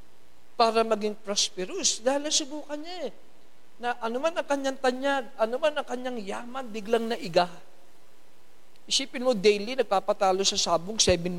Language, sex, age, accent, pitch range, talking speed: Filipino, male, 50-69, native, 190-260 Hz, 135 wpm